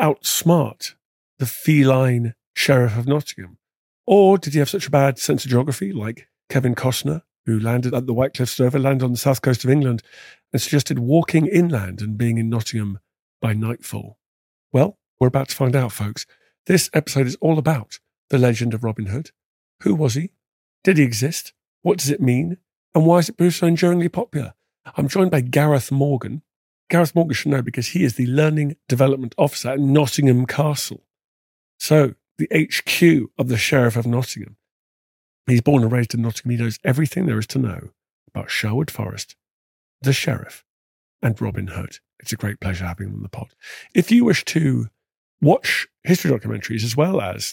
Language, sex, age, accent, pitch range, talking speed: English, male, 50-69, British, 115-150 Hz, 180 wpm